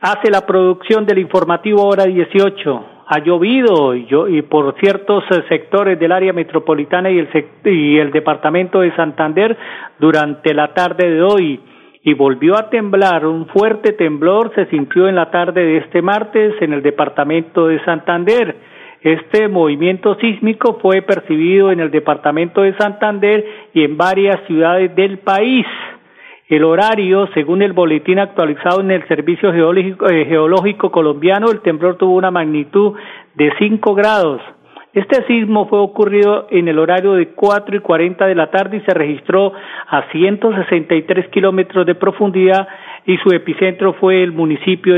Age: 40-59